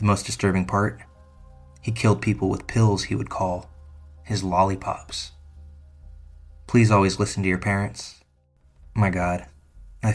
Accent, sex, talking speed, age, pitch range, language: American, male, 135 wpm, 20-39, 95-110 Hz, English